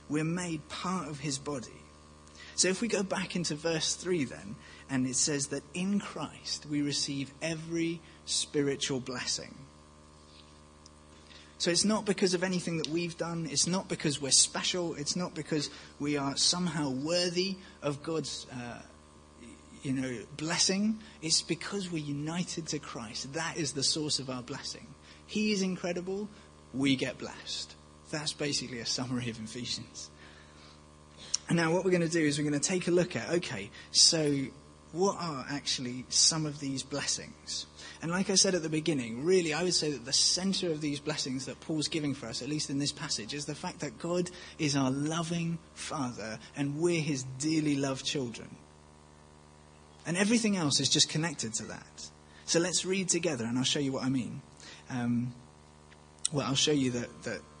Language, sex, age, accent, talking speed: English, male, 30-49, British, 175 wpm